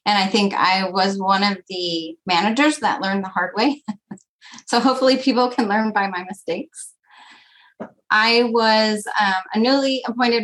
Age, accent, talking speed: 30-49, American, 160 wpm